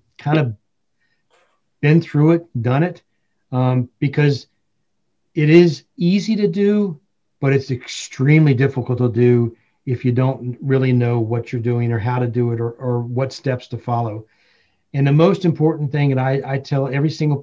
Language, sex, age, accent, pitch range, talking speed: English, male, 40-59, American, 125-145 Hz, 170 wpm